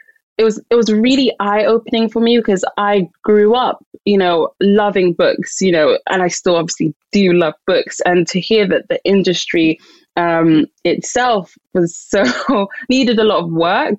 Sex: female